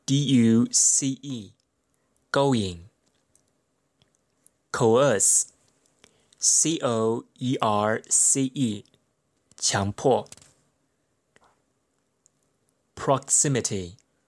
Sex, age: male, 20-39